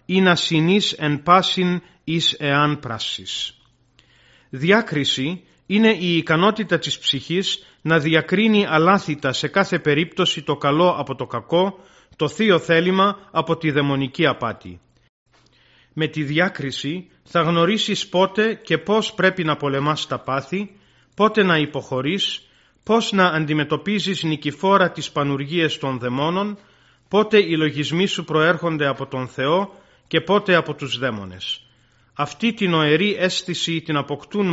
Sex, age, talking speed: male, 40-59, 140 wpm